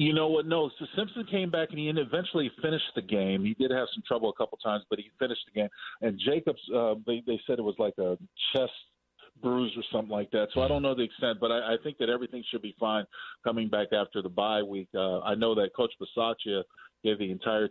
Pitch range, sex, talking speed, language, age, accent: 100-125 Hz, male, 245 wpm, English, 40-59, American